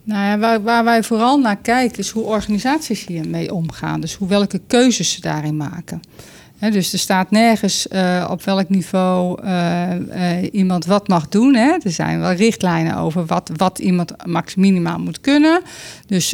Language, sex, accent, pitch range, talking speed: Dutch, female, Dutch, 175-215 Hz, 170 wpm